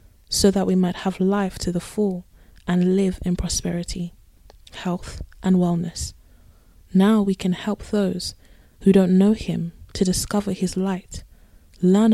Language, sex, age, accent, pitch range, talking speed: English, female, 20-39, British, 165-195 Hz, 150 wpm